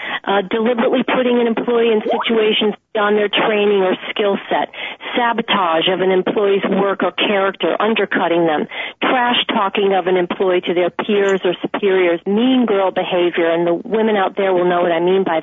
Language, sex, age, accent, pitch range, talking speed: English, female, 40-59, American, 185-230 Hz, 180 wpm